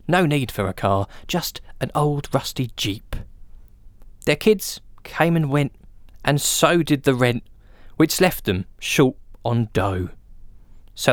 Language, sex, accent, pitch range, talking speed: English, male, British, 100-165 Hz, 145 wpm